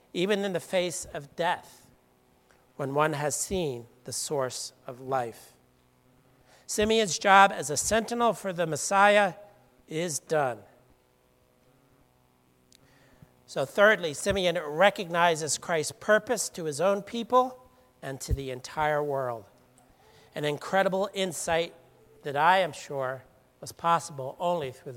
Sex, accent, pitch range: male, American, 130-195 Hz